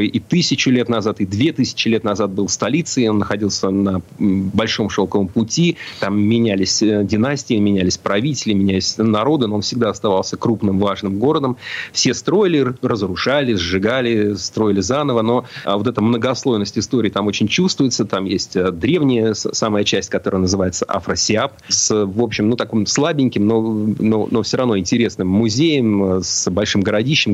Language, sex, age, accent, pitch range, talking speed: Russian, male, 30-49, native, 95-115 Hz, 150 wpm